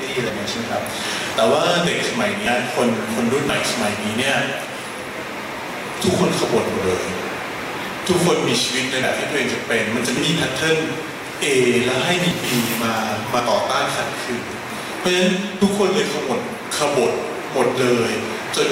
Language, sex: Thai, male